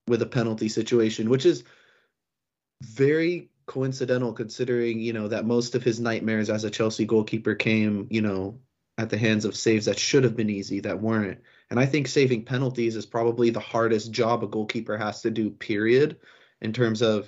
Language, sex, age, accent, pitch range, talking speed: English, male, 30-49, American, 110-125 Hz, 190 wpm